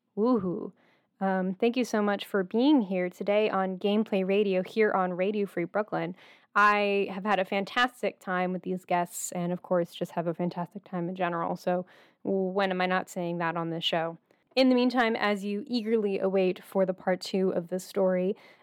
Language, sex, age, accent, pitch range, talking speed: English, female, 10-29, American, 185-215 Hz, 195 wpm